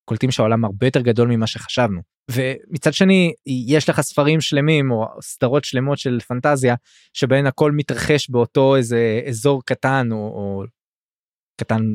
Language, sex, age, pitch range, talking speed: Hebrew, male, 20-39, 115-150 Hz, 140 wpm